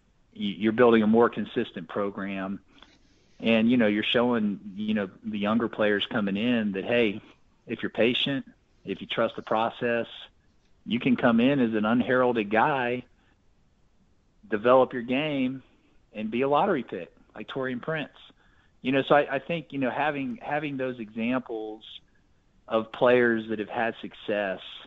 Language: English